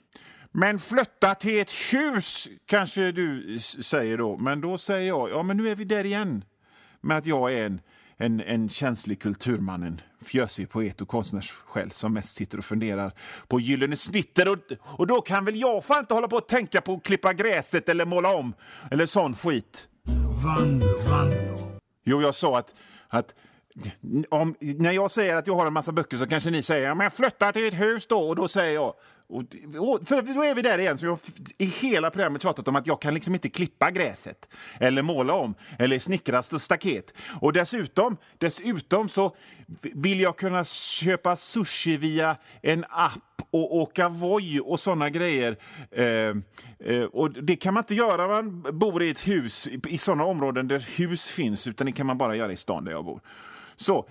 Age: 40-59